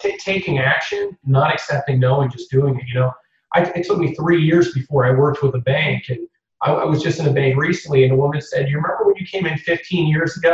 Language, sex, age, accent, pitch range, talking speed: English, male, 30-49, American, 125-155 Hz, 260 wpm